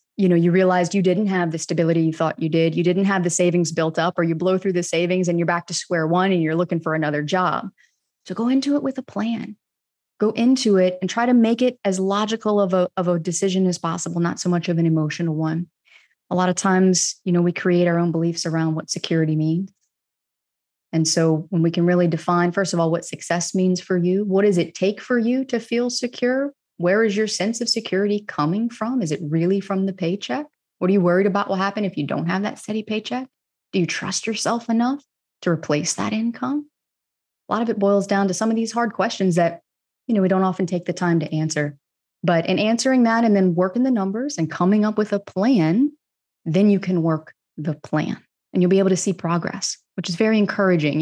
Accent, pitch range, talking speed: American, 170-215 Hz, 235 wpm